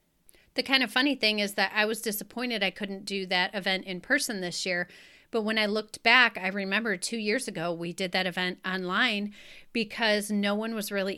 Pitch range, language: 190-230 Hz, English